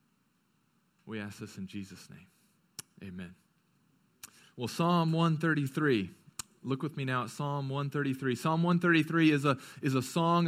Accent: American